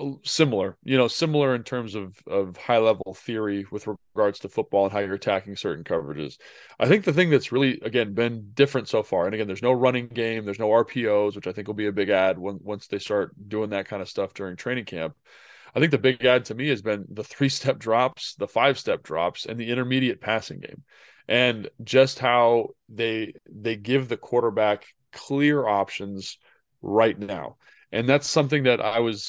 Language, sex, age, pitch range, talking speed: English, male, 20-39, 105-130 Hz, 200 wpm